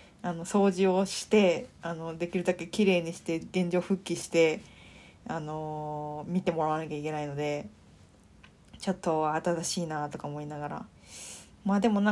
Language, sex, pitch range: Japanese, female, 170-235 Hz